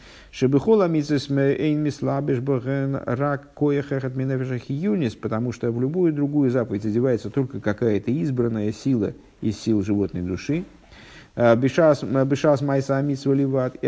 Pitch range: 115-145 Hz